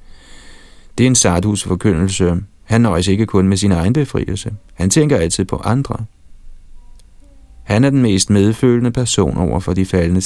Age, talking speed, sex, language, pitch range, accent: 40-59, 150 wpm, male, Danish, 90-110 Hz, native